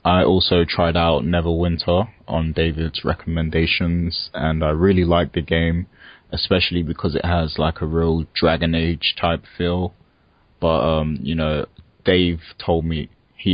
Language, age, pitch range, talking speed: English, 20-39, 75-85 Hz, 145 wpm